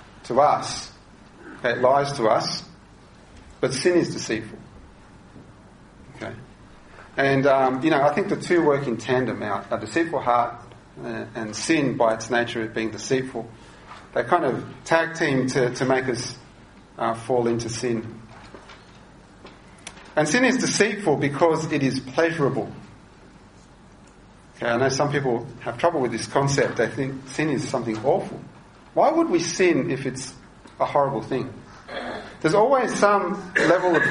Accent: Australian